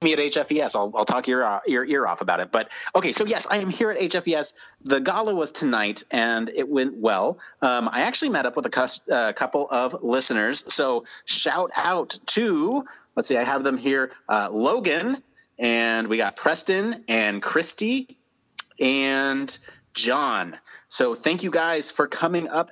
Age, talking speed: 30-49, 180 wpm